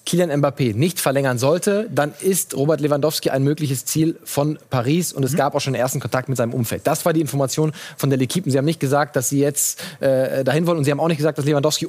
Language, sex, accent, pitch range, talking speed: German, male, German, 135-160 Hz, 250 wpm